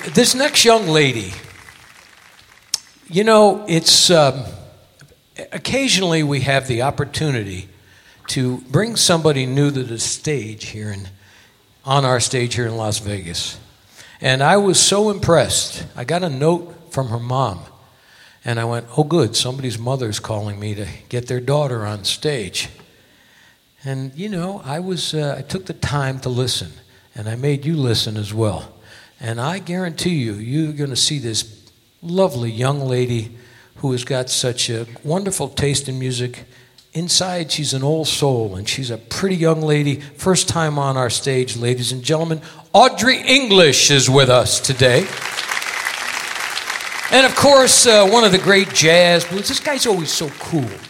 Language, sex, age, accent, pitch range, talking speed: English, male, 60-79, American, 120-170 Hz, 160 wpm